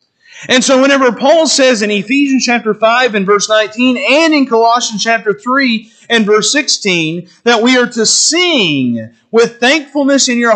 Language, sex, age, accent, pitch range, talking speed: English, male, 40-59, American, 195-255 Hz, 165 wpm